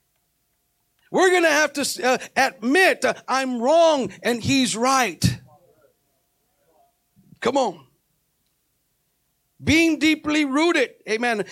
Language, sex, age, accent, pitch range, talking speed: English, male, 50-69, American, 190-285 Hz, 100 wpm